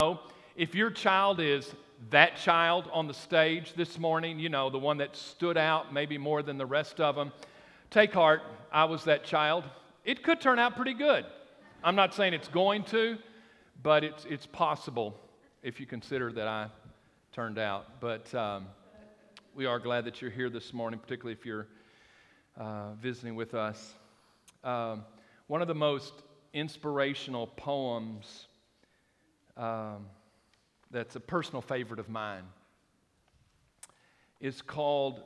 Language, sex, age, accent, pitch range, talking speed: English, male, 50-69, American, 120-160 Hz, 150 wpm